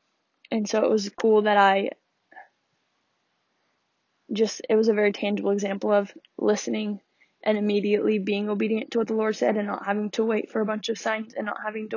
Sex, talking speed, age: female, 195 wpm, 10-29